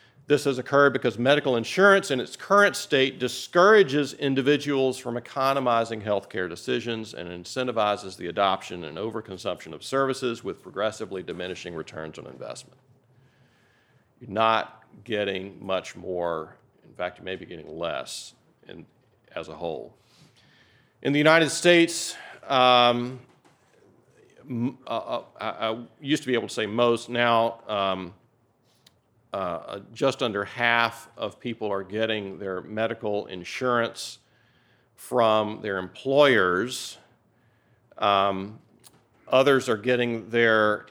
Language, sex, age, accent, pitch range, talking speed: English, male, 40-59, American, 105-130 Hz, 120 wpm